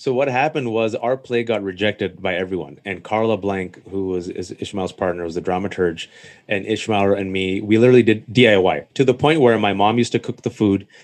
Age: 30-49